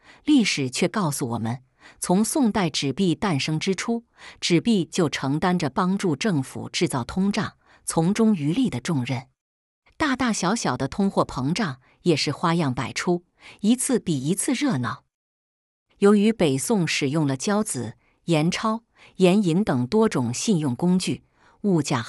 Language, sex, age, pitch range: English, female, 50-69, 135-200 Hz